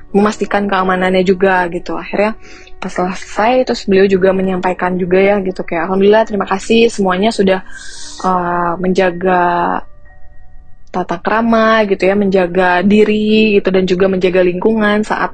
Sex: female